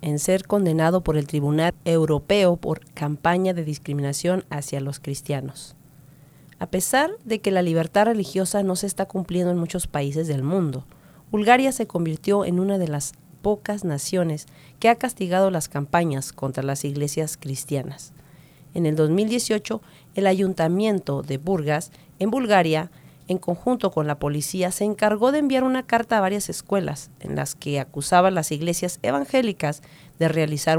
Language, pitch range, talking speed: English, 150-195 Hz, 155 wpm